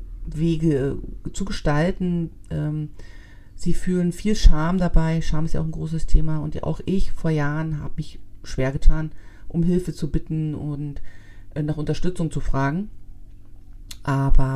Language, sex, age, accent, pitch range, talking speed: German, female, 40-59, German, 135-170 Hz, 140 wpm